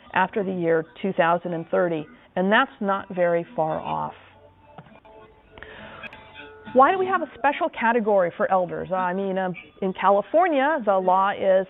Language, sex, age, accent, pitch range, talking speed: English, female, 40-59, American, 180-230 Hz, 140 wpm